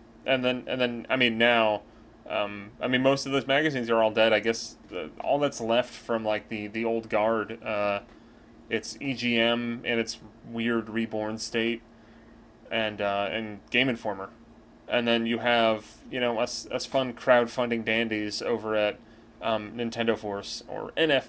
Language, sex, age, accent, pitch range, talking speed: English, male, 30-49, American, 110-120 Hz, 165 wpm